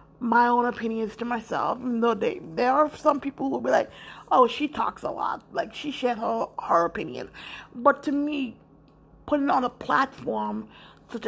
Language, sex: English, female